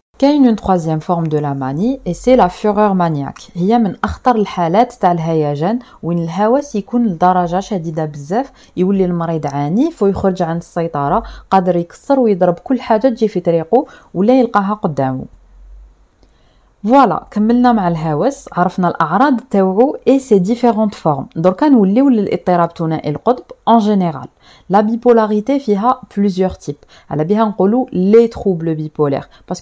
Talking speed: 145 wpm